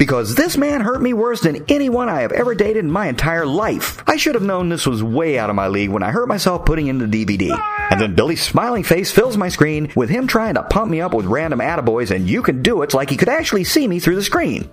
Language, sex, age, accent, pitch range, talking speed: English, male, 40-59, American, 150-250 Hz, 275 wpm